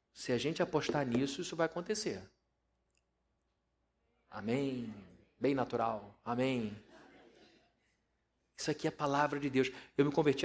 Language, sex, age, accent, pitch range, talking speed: Portuguese, male, 40-59, Brazilian, 120-160 Hz, 125 wpm